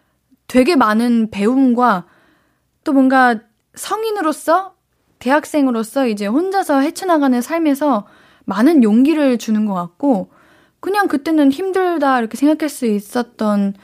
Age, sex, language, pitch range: 20-39, female, Korean, 210-295 Hz